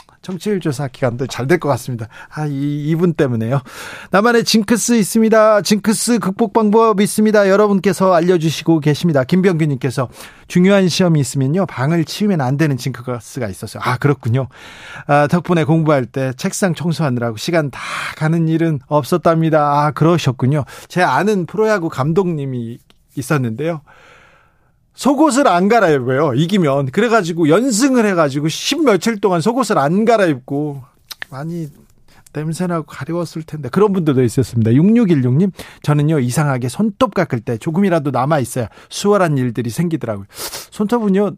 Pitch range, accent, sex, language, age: 135-185 Hz, native, male, Korean, 40-59